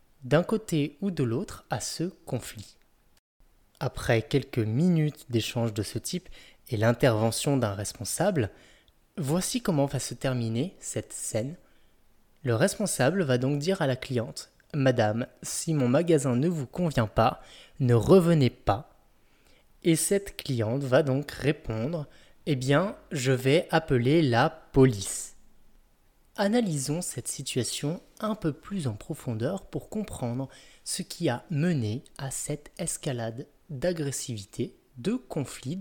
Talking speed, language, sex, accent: 135 wpm, French, male, French